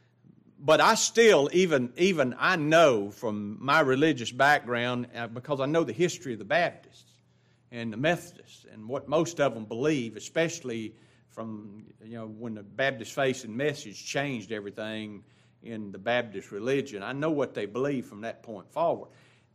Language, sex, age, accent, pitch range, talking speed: English, male, 50-69, American, 120-190 Hz, 165 wpm